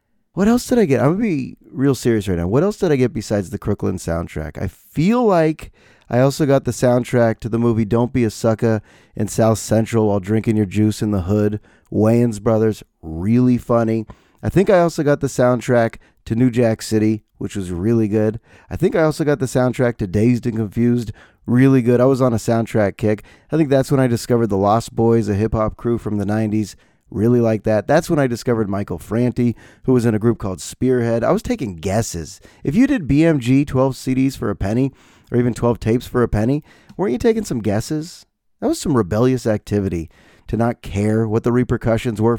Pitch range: 110-140 Hz